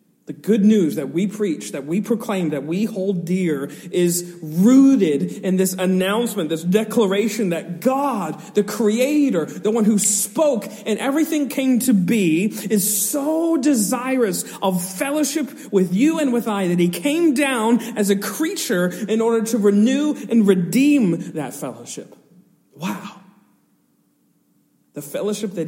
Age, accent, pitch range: 40-59, American, 170-235 Hz